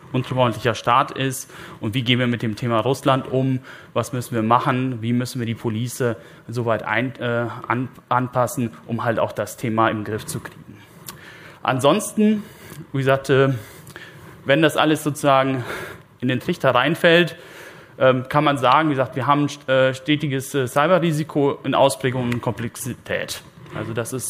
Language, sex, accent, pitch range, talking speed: German, male, German, 120-145 Hz, 150 wpm